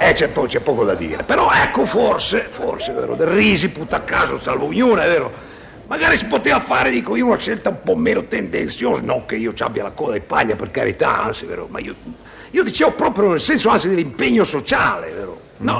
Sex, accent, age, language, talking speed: male, native, 60-79, Italian, 215 wpm